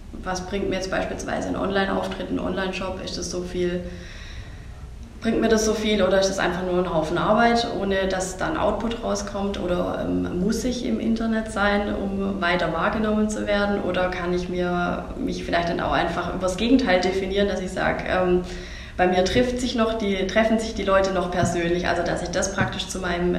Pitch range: 175-210 Hz